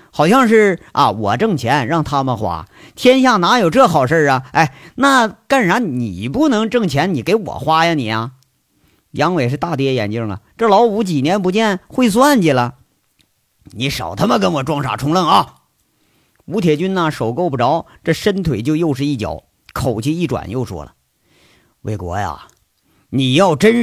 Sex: male